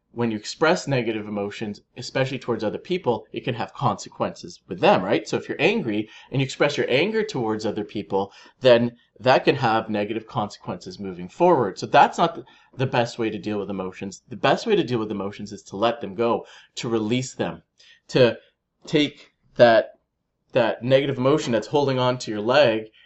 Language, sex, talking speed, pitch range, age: English, male, 190 wpm, 105-130 Hz, 30-49